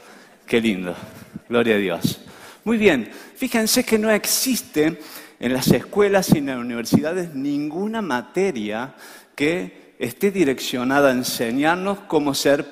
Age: 50-69